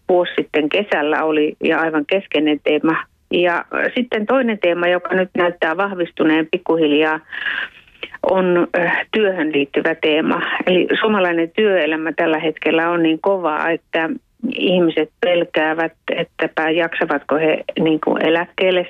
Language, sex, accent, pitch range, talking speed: Finnish, female, native, 155-175 Hz, 115 wpm